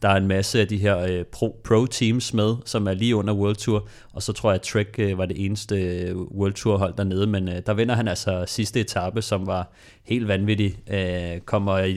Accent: native